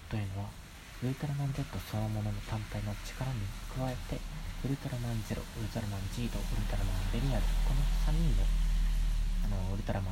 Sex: male